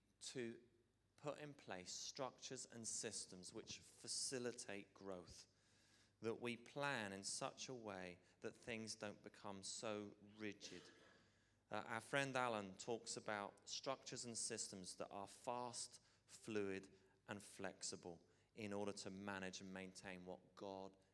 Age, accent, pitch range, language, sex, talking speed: 30-49, British, 100-125 Hz, English, male, 130 wpm